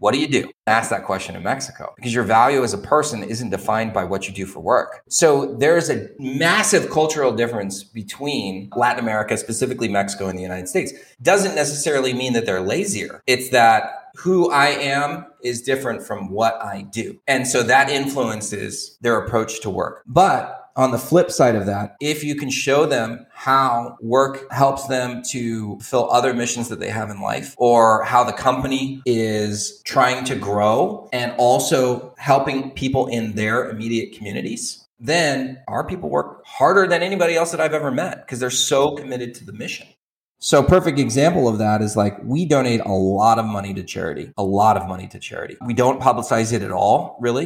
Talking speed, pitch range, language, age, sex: 190 wpm, 105-135 Hz, English, 30-49, male